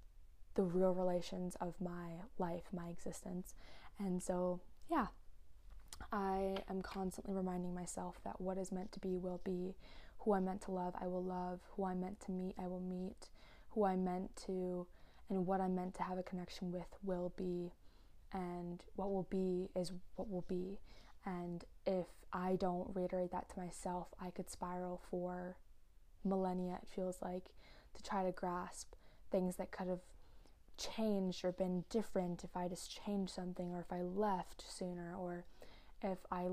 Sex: female